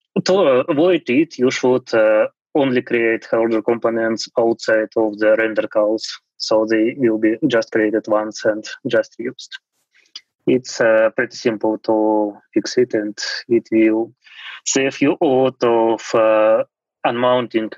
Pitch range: 110-135 Hz